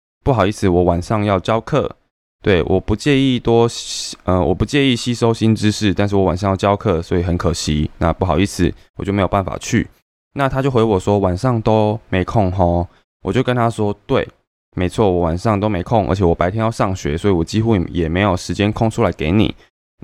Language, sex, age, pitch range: Chinese, male, 20-39, 90-115 Hz